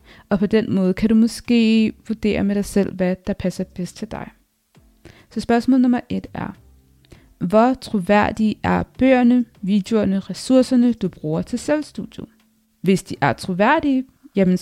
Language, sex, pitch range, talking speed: Danish, female, 190-245 Hz, 150 wpm